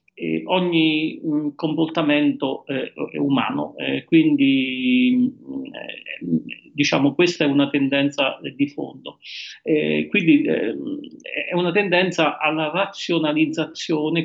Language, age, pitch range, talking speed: Italian, 40-59, 145-210 Hz, 105 wpm